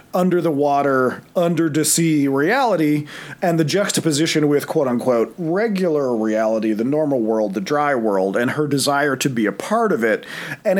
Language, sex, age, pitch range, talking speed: English, male, 40-59, 140-175 Hz, 145 wpm